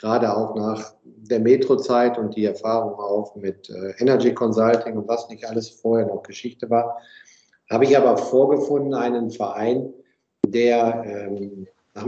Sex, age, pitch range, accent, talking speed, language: male, 50-69, 105-130 Hz, German, 140 wpm, German